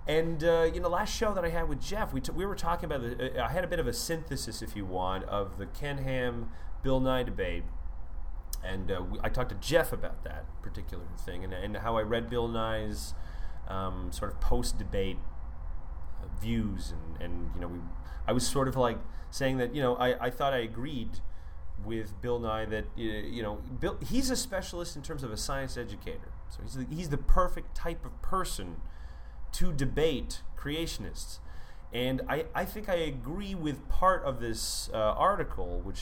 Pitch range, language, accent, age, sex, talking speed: 85-145 Hz, English, American, 30-49, male, 200 wpm